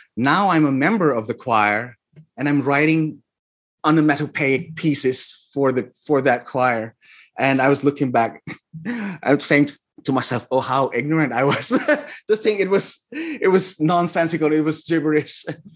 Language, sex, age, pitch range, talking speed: English, male, 30-49, 135-180 Hz, 160 wpm